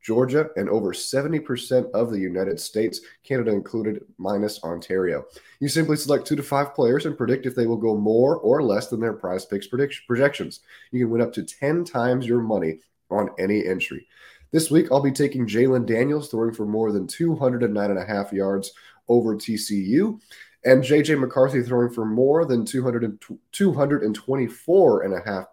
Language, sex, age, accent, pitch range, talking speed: English, male, 30-49, American, 100-130 Hz, 160 wpm